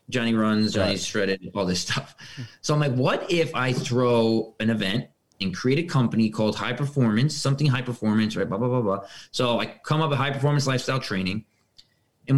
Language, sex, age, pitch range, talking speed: English, male, 30-49, 115-145 Hz, 200 wpm